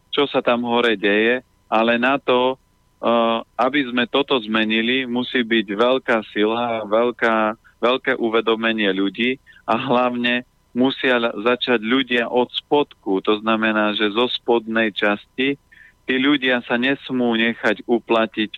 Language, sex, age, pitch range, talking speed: Slovak, male, 40-59, 110-125 Hz, 130 wpm